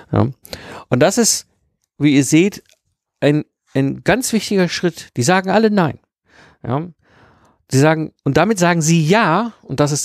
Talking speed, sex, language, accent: 160 wpm, male, German, German